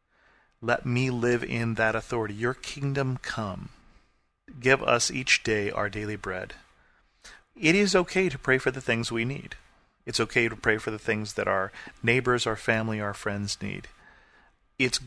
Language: English